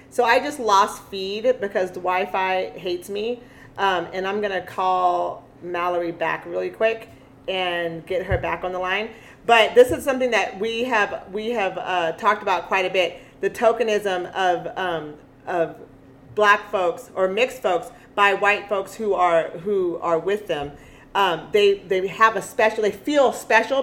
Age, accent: 40-59, American